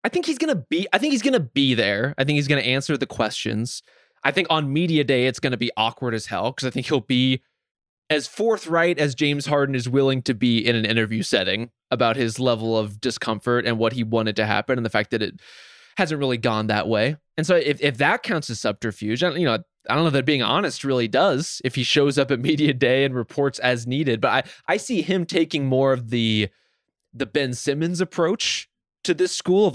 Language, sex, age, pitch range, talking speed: English, male, 20-39, 125-160 Hz, 240 wpm